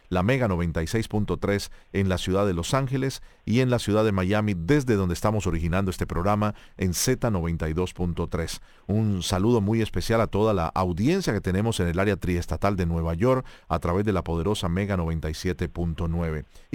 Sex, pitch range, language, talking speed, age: male, 90-120 Hz, Spanish, 170 wpm, 40-59